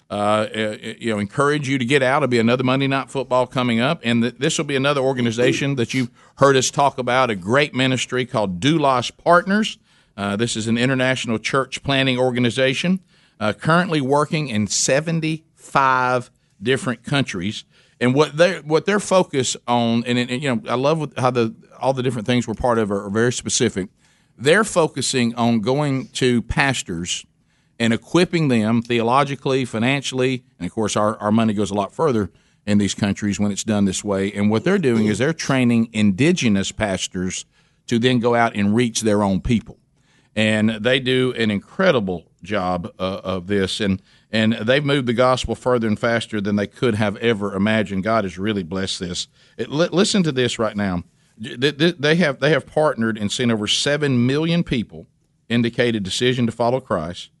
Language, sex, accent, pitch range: English, male, American, 110-140 Hz